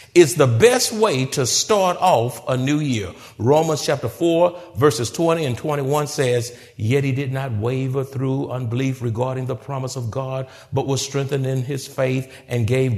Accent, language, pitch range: American, English, 130-215 Hz